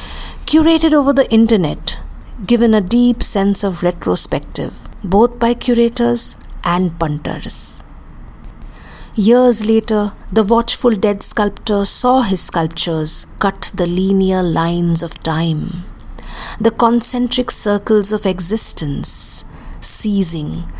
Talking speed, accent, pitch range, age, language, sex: 105 wpm, Indian, 175-225 Hz, 50-69, English, female